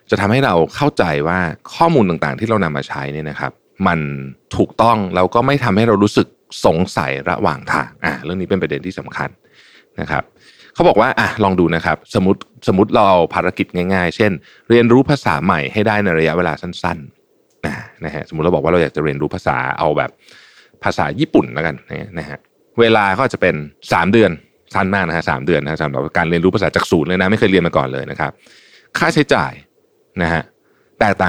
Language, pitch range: Thai, 80-110 Hz